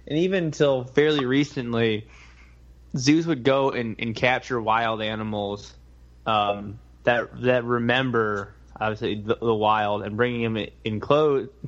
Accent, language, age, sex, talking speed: American, English, 20-39, male, 135 wpm